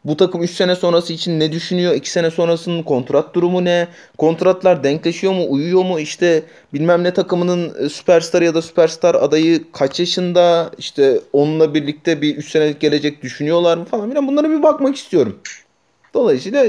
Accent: native